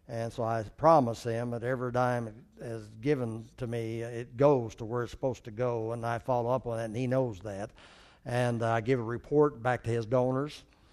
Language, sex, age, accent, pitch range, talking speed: English, male, 60-79, American, 115-130 Hz, 215 wpm